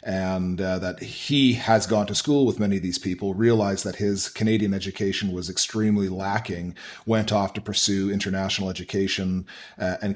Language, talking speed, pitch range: English, 170 wpm, 95-110 Hz